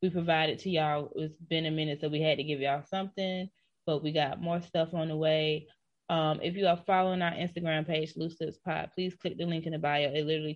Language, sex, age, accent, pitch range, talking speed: English, female, 20-39, American, 150-170 Hz, 245 wpm